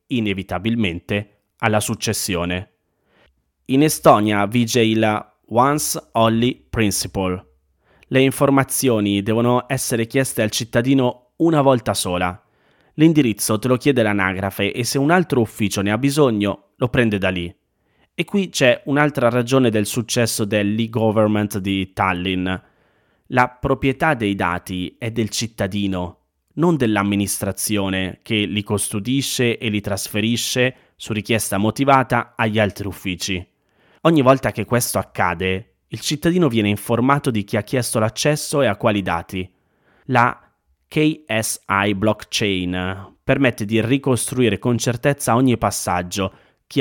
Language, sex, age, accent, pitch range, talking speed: Italian, male, 30-49, native, 100-130 Hz, 125 wpm